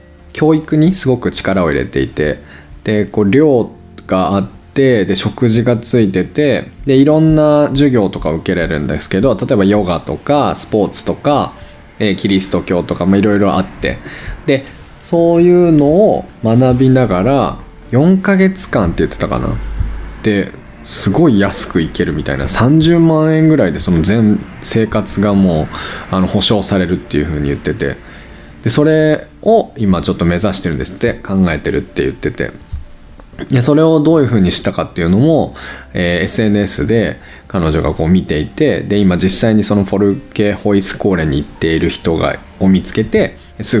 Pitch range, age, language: 90-120 Hz, 20-39, Japanese